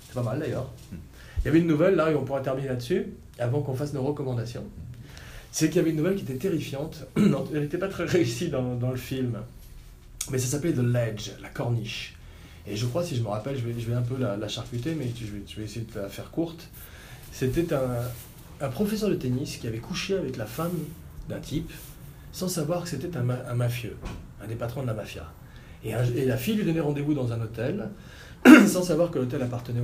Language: French